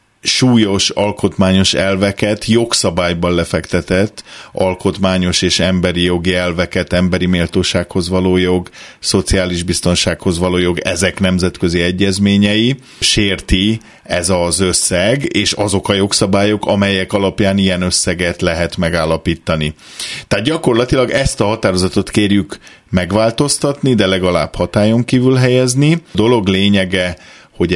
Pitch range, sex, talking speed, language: 90-105 Hz, male, 110 wpm, Hungarian